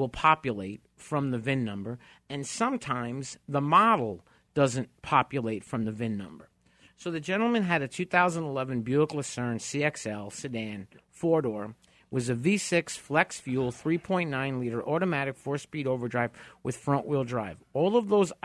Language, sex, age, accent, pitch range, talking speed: English, male, 50-69, American, 130-180 Hz, 145 wpm